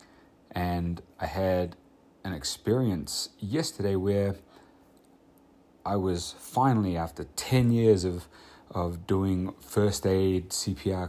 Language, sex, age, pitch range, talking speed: English, male, 30-49, 85-100 Hz, 105 wpm